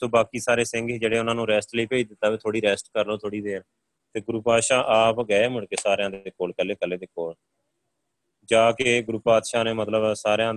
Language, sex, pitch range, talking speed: Punjabi, male, 100-125 Hz, 220 wpm